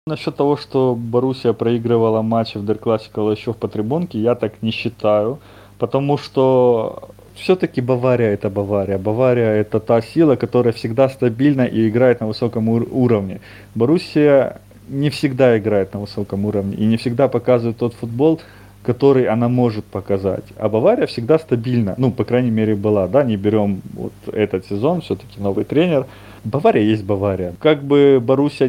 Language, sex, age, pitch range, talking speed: Russian, male, 20-39, 105-125 Hz, 155 wpm